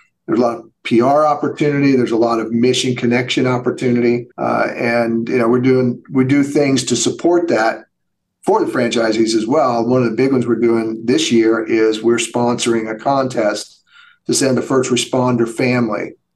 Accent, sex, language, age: American, male, English, 50-69